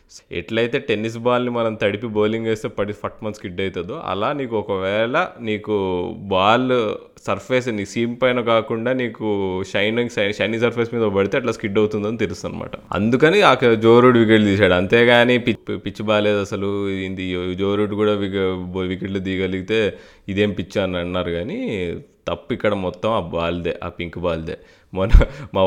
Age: 20-39